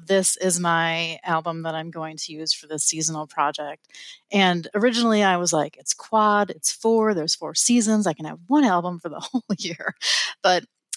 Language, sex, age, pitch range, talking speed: English, female, 30-49, 160-205 Hz, 190 wpm